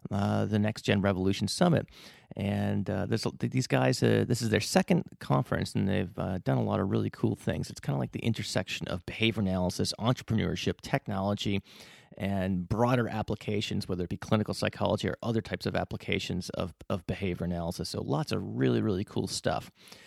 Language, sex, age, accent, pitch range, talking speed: English, male, 30-49, American, 95-120 Hz, 180 wpm